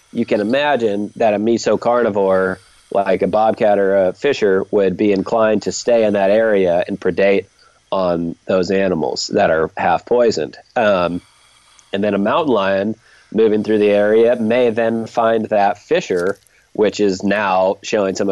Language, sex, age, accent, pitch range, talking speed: English, male, 30-49, American, 95-115 Hz, 165 wpm